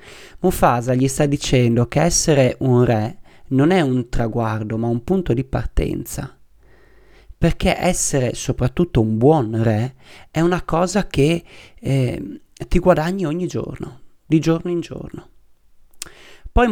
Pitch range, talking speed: 120-170 Hz, 135 wpm